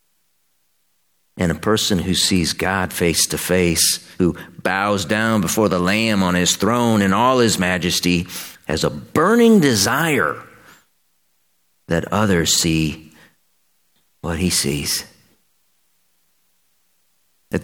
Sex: male